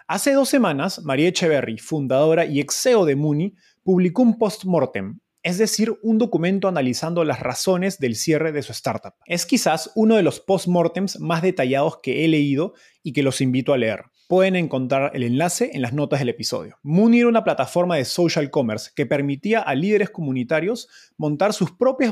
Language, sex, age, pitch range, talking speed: Spanish, male, 20-39, 140-190 Hz, 180 wpm